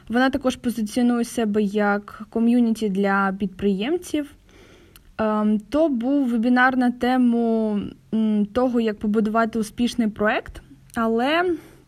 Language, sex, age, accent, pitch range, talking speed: Ukrainian, female, 20-39, native, 215-260 Hz, 95 wpm